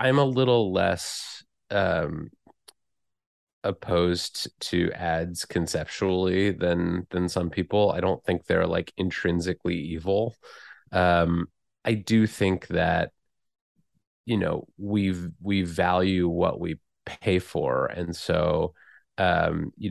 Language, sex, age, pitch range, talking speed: English, male, 30-49, 85-105 Hz, 115 wpm